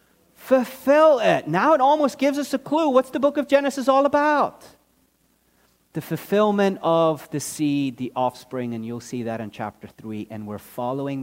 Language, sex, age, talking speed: English, male, 40-59, 175 wpm